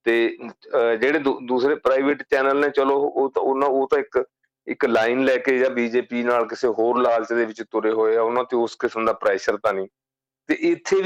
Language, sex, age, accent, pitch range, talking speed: English, male, 40-59, Indian, 110-135 Hz, 70 wpm